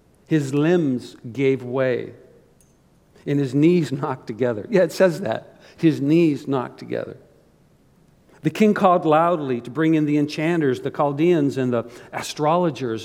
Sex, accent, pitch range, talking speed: male, American, 135-175 Hz, 145 wpm